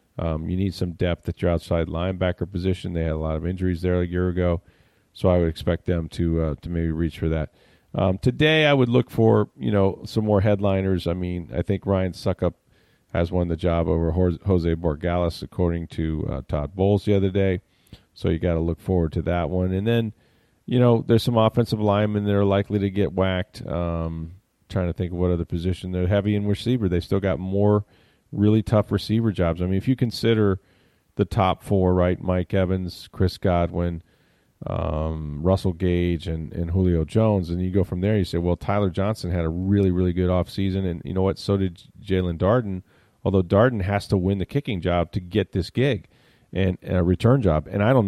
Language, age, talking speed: English, 40-59, 215 wpm